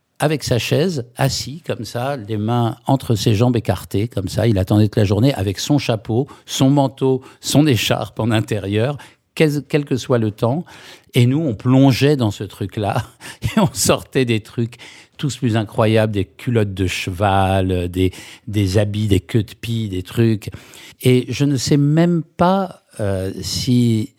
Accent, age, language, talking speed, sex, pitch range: French, 60-79, French, 170 wpm, male, 105-130 Hz